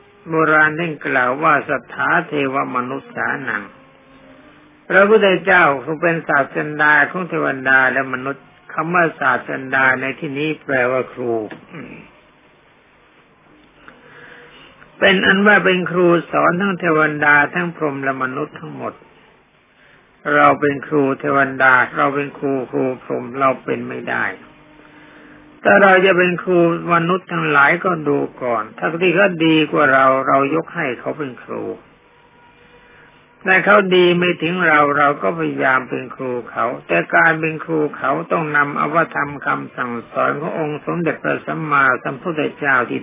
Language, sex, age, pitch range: Thai, male, 60-79, 140-175 Hz